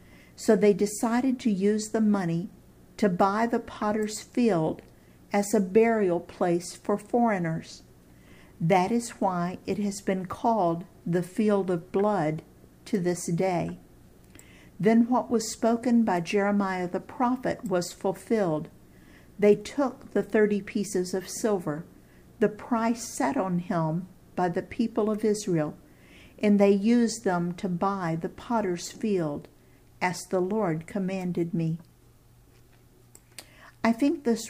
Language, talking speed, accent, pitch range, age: English, 130 wpm, American, 170-225 Hz, 50-69